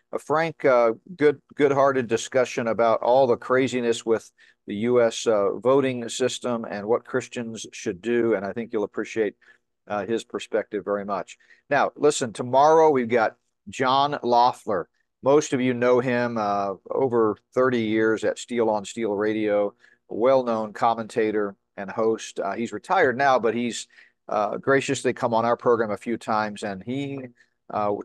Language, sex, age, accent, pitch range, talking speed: English, male, 50-69, American, 105-125 Hz, 165 wpm